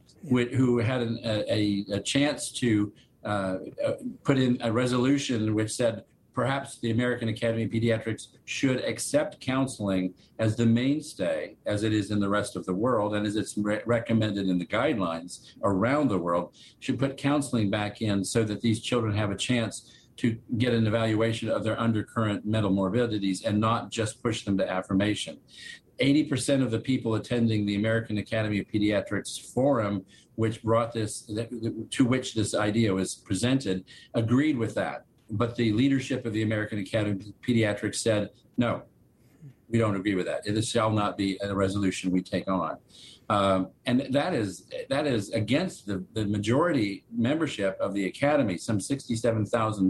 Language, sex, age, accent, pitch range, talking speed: English, male, 50-69, American, 105-125 Hz, 165 wpm